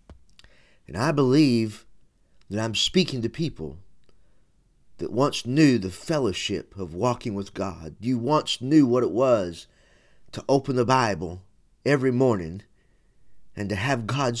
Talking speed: 135 wpm